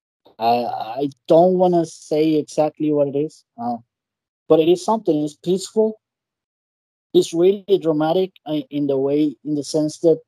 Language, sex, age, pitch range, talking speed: English, male, 20-39, 125-160 Hz, 150 wpm